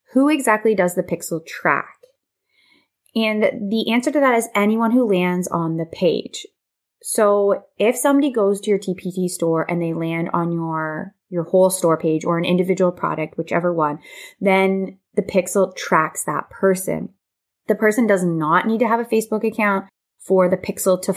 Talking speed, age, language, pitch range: 175 wpm, 20-39, English, 175-220 Hz